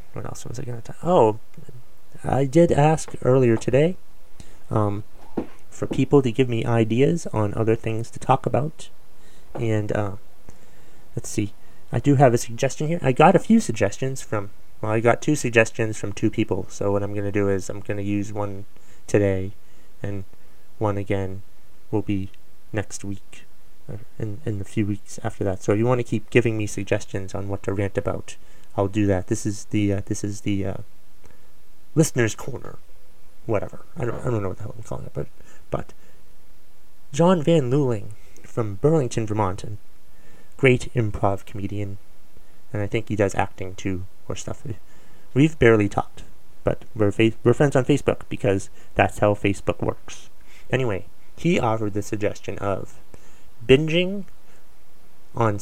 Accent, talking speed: American, 175 wpm